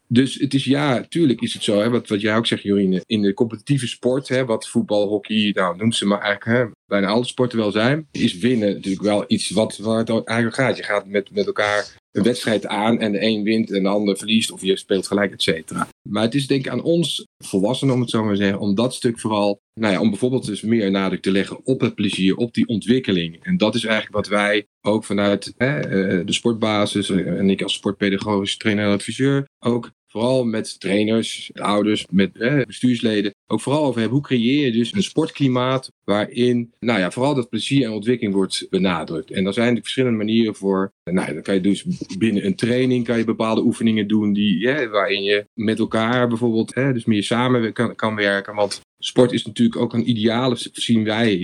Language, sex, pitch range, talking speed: Dutch, male, 100-120 Hz, 220 wpm